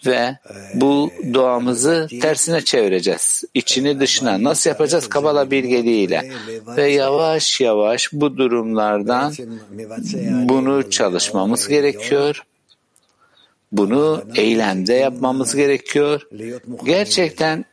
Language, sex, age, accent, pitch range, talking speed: Turkish, male, 60-79, native, 110-145 Hz, 80 wpm